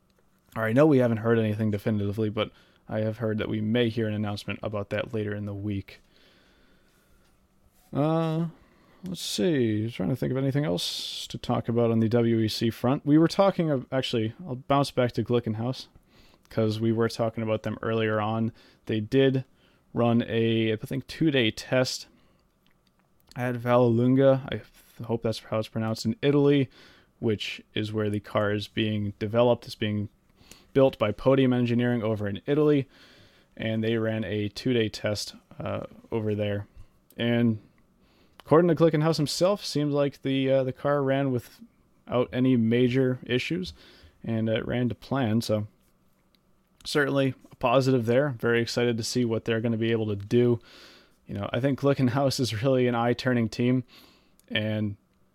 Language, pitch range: English, 110-130 Hz